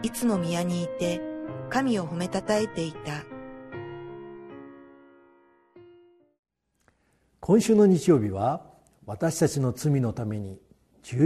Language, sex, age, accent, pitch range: Japanese, male, 50-69, native, 120-180 Hz